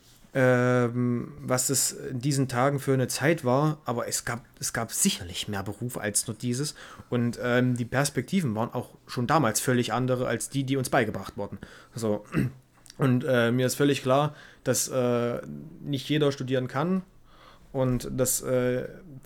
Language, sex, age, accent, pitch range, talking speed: German, male, 30-49, German, 125-145 Hz, 155 wpm